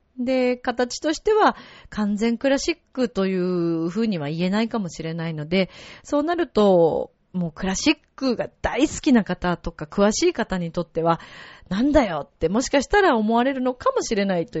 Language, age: Japanese, 30-49